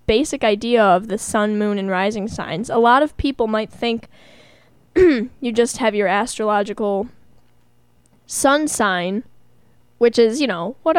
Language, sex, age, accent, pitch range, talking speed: English, female, 10-29, American, 205-260 Hz, 145 wpm